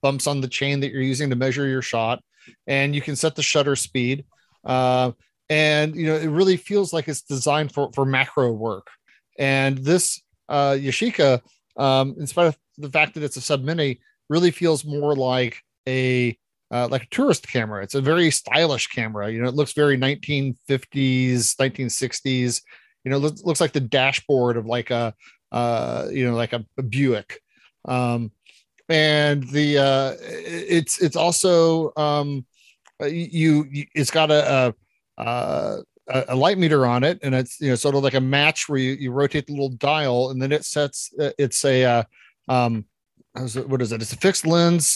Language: English